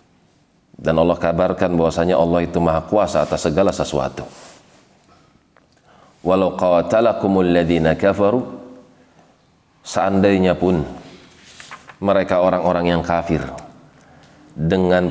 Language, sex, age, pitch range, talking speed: Indonesian, male, 30-49, 85-95 Hz, 75 wpm